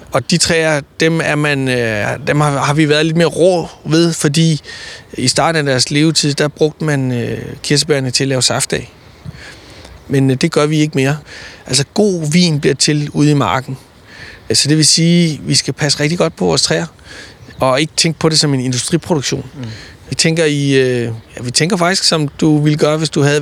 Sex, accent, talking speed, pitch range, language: male, native, 200 wpm, 135-160 Hz, Danish